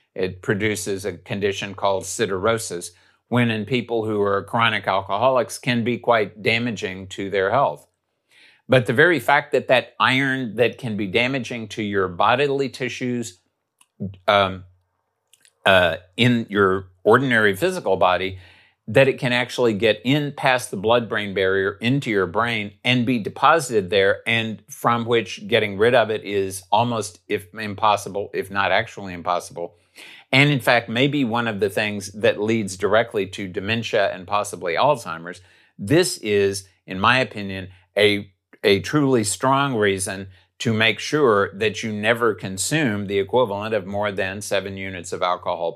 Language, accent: English, American